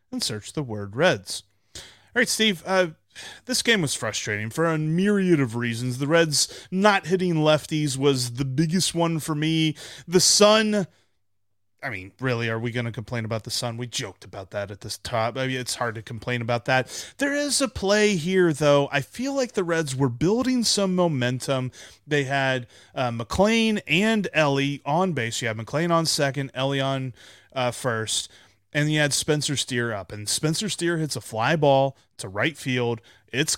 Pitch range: 115-170 Hz